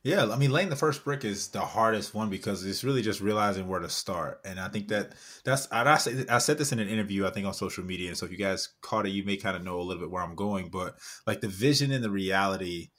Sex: male